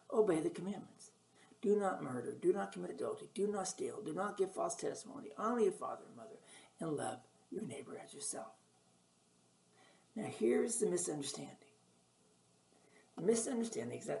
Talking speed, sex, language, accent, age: 150 wpm, male, English, American, 60-79